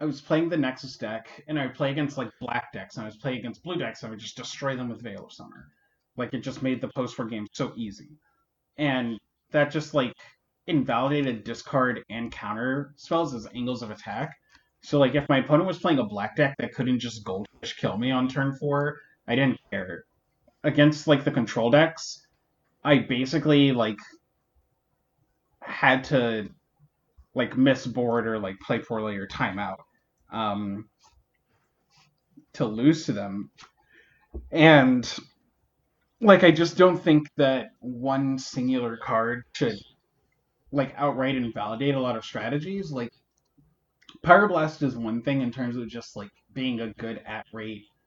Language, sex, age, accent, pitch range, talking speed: English, male, 30-49, American, 115-150 Hz, 165 wpm